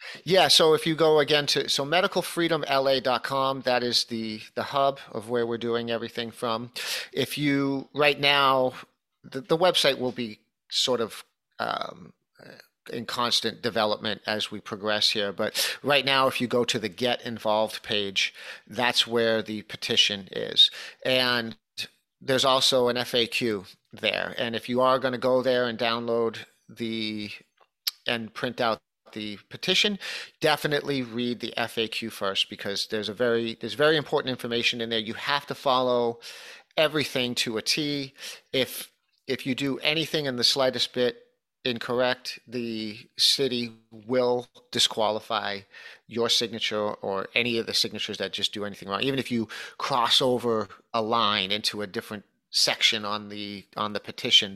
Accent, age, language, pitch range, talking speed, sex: American, 40-59, English, 110-130 Hz, 155 wpm, male